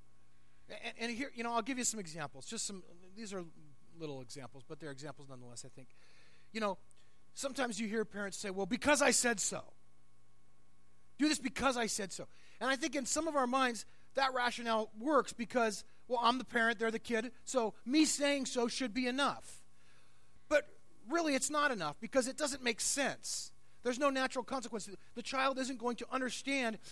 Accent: American